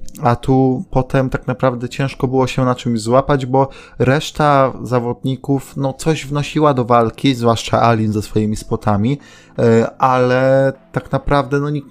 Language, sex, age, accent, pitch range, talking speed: Polish, male, 20-39, native, 110-130 Hz, 145 wpm